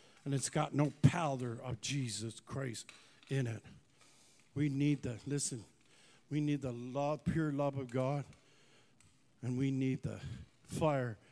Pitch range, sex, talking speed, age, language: 135-185 Hz, male, 145 wpm, 50-69, English